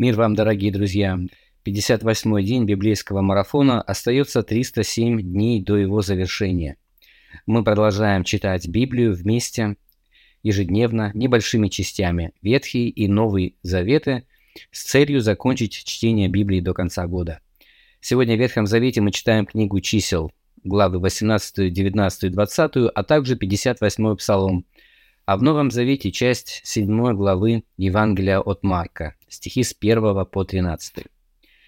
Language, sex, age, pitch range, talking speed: Russian, male, 20-39, 95-115 Hz, 125 wpm